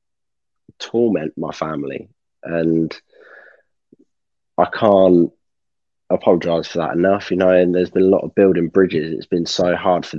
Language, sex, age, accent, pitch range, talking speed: English, male, 20-39, British, 80-90 Hz, 145 wpm